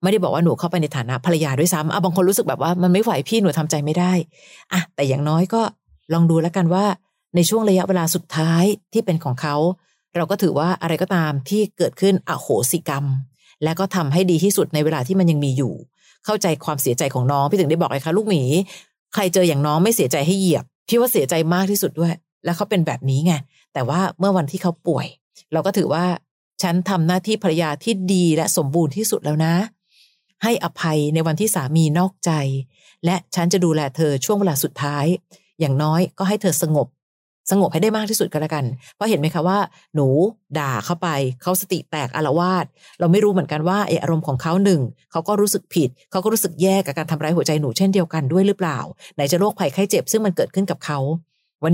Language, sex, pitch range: Thai, female, 155-190 Hz